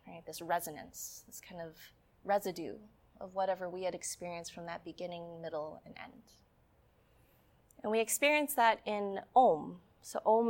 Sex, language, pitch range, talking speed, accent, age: female, English, 175-225 Hz, 145 wpm, American, 20-39